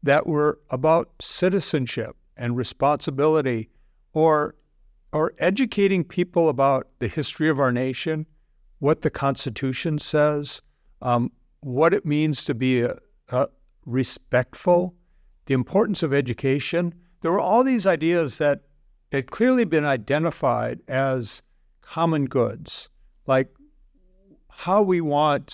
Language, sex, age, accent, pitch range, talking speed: English, male, 50-69, American, 130-160 Hz, 115 wpm